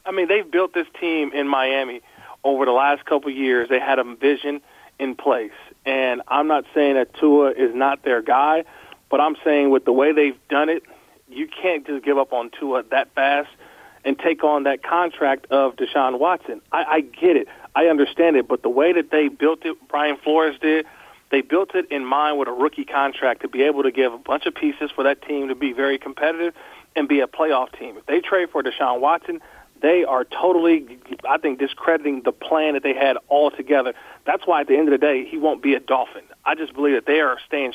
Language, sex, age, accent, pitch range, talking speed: English, male, 40-59, American, 140-170 Hz, 225 wpm